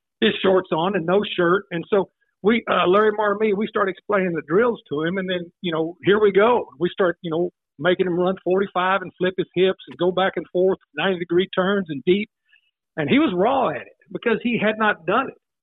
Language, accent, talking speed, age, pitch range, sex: English, American, 230 wpm, 50-69, 170-205 Hz, male